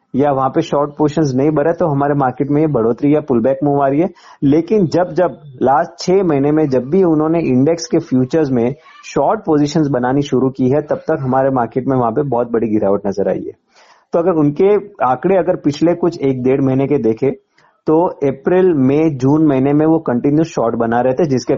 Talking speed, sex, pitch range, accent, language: 210 wpm, male, 130-165 Hz, native, Hindi